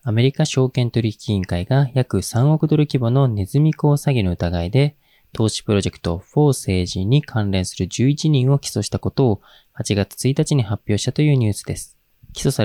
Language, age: Japanese, 20-39